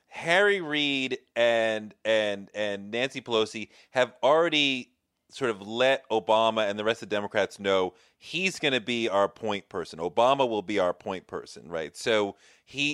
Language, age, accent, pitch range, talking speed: English, 30-49, American, 110-165 Hz, 165 wpm